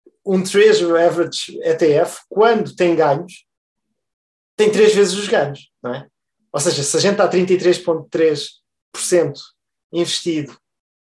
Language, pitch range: Portuguese, 145-210 Hz